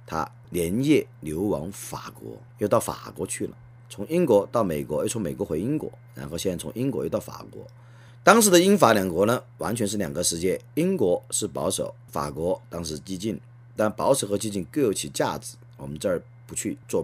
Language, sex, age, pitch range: Chinese, male, 40-59, 105-145 Hz